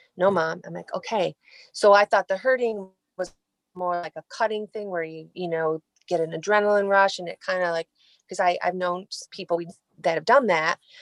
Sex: female